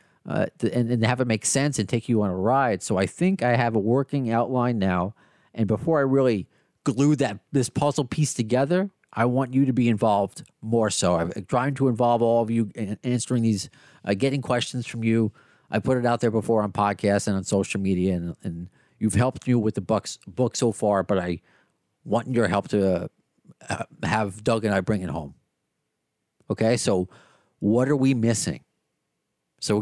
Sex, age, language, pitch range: male, 40-59, English, 105-140 Hz